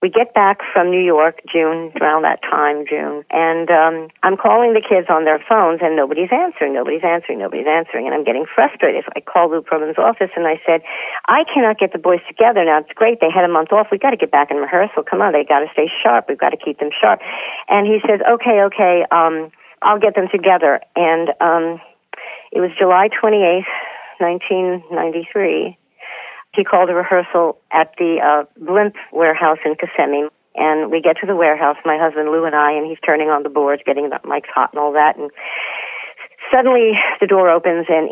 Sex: female